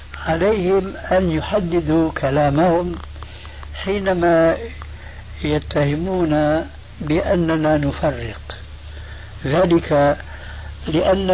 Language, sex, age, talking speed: Arabic, male, 60-79, 55 wpm